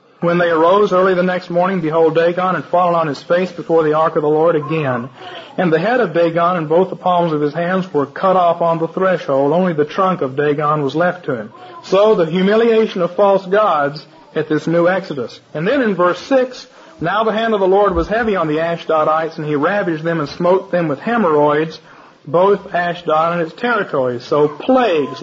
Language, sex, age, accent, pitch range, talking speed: English, male, 40-59, American, 160-200 Hz, 215 wpm